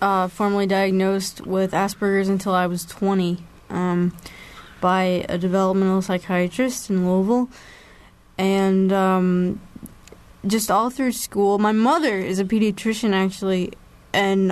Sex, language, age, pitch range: female, English, 20-39, 190-215 Hz